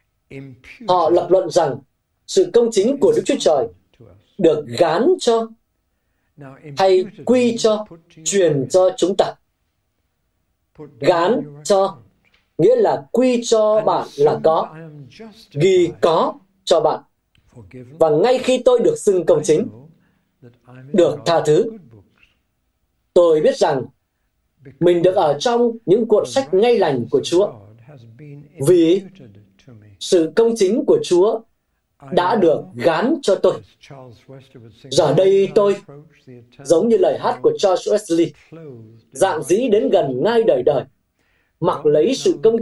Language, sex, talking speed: Vietnamese, male, 130 wpm